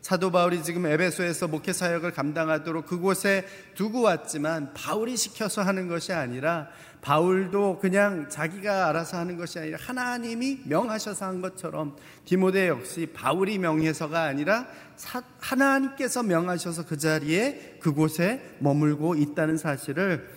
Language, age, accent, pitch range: Korean, 40-59, native, 155-190 Hz